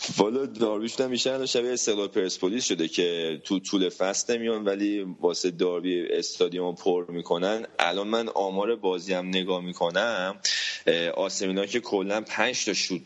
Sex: male